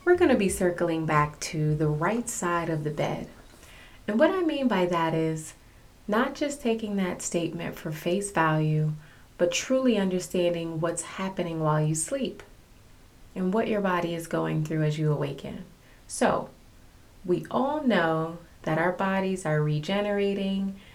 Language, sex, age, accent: English, female, 30-49, American